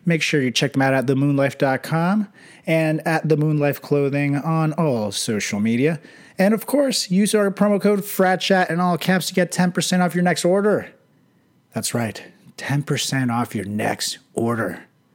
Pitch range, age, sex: 130-185 Hz, 30-49, male